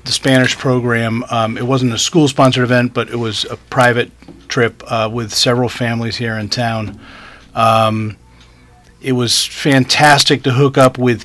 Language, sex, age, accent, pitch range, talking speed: English, male, 40-59, American, 110-130 Hz, 165 wpm